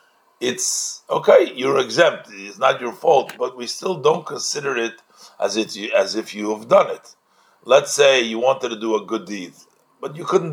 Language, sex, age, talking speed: English, male, 50-69, 200 wpm